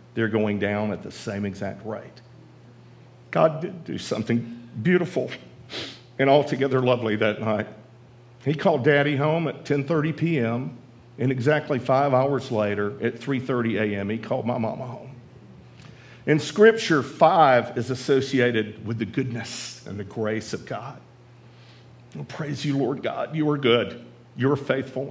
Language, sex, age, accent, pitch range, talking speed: English, male, 50-69, American, 110-130 Hz, 145 wpm